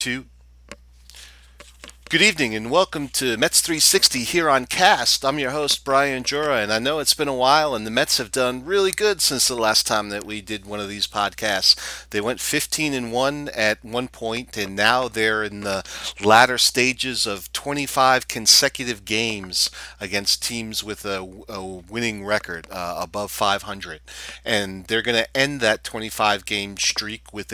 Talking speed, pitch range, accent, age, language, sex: 170 wpm, 100-120 Hz, American, 40-59, English, male